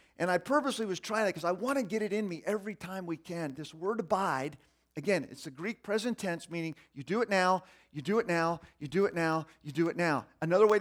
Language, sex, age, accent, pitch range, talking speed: English, male, 40-59, American, 170-275 Hz, 255 wpm